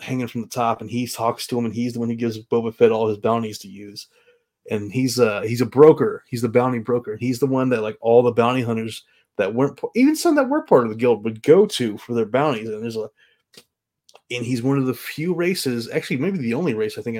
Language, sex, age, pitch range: English, male, 30-49, 115-155 Hz